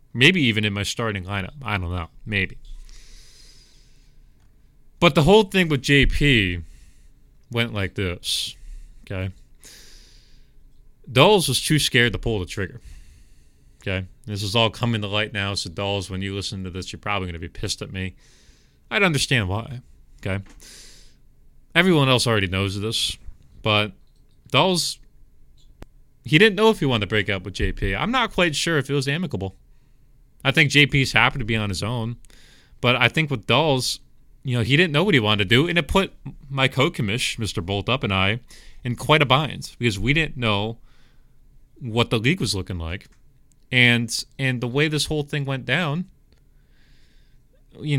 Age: 30-49